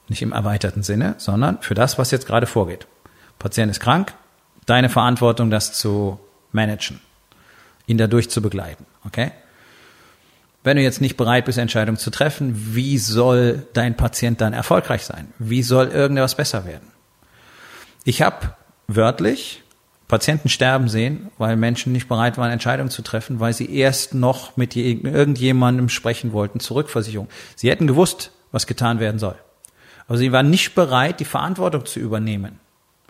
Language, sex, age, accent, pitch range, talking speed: German, male, 40-59, German, 110-135 Hz, 150 wpm